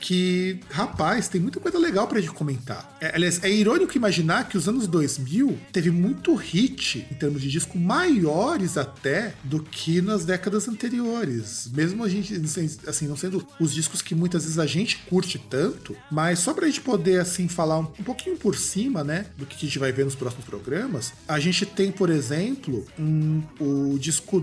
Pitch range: 150-200 Hz